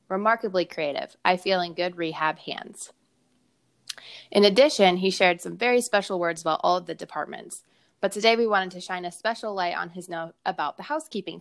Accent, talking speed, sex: American, 190 wpm, female